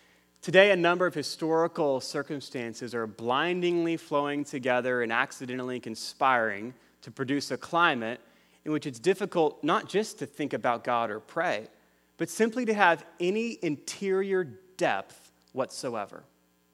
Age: 30-49